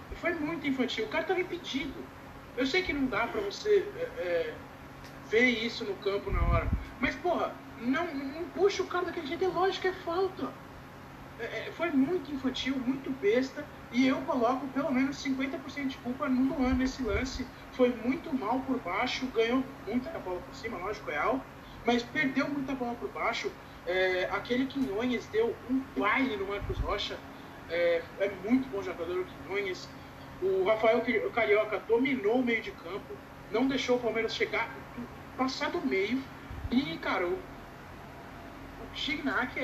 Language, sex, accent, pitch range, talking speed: Portuguese, male, Brazilian, 230-330 Hz, 165 wpm